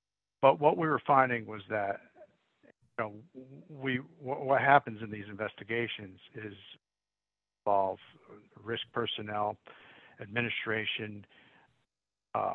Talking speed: 95 wpm